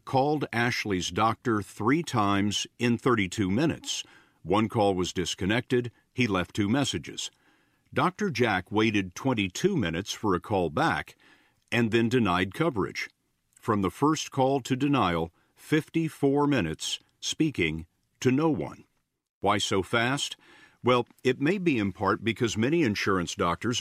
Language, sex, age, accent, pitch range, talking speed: English, male, 50-69, American, 95-125 Hz, 135 wpm